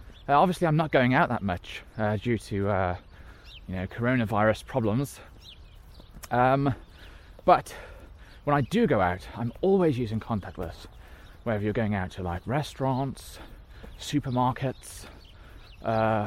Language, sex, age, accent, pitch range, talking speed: English, male, 20-39, British, 90-125 Hz, 130 wpm